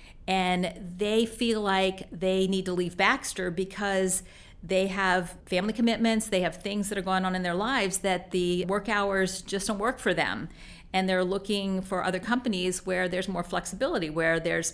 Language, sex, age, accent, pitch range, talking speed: English, female, 50-69, American, 180-205 Hz, 185 wpm